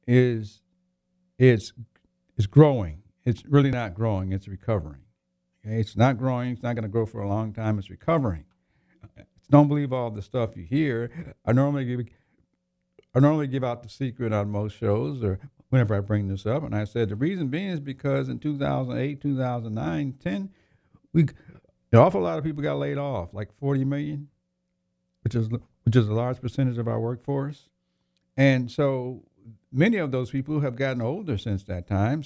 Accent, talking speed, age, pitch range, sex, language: American, 190 wpm, 50-69, 100-140 Hz, male, English